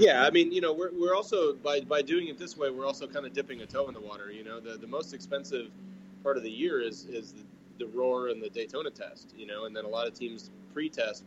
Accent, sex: American, male